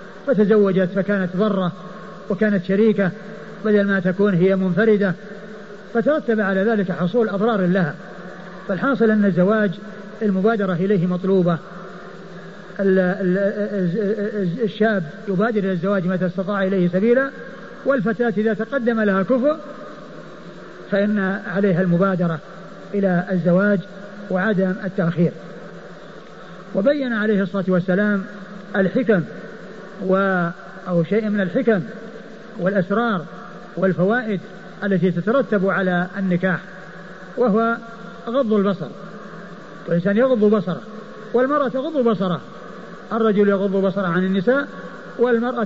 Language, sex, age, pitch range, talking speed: Arabic, male, 50-69, 190-220 Hz, 95 wpm